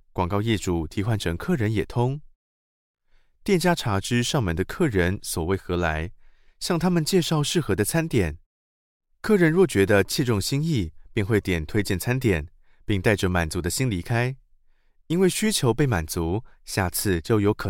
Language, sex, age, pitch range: Chinese, male, 20-39, 85-135 Hz